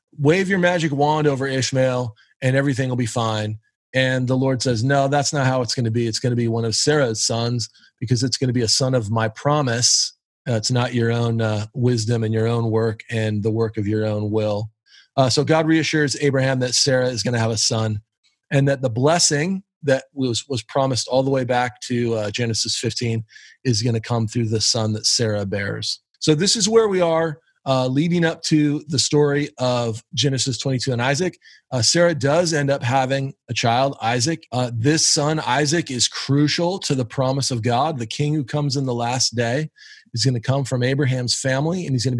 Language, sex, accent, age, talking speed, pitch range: English, male, American, 30-49, 220 wpm, 115-145 Hz